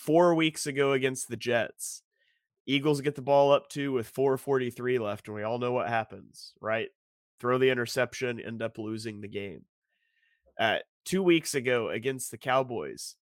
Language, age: English, 30-49